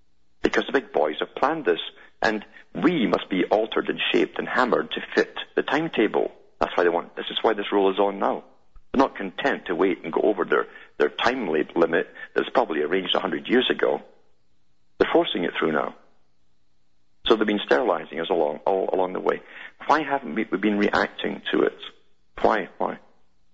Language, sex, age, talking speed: English, male, 50-69, 190 wpm